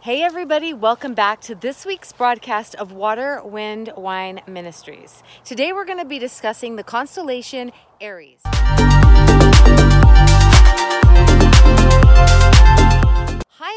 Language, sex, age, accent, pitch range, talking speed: English, female, 30-49, American, 215-270 Hz, 100 wpm